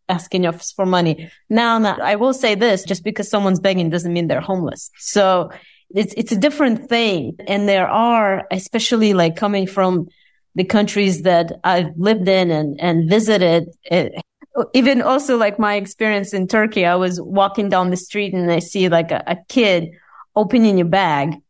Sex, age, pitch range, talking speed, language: female, 30-49, 180-220 Hz, 175 wpm, English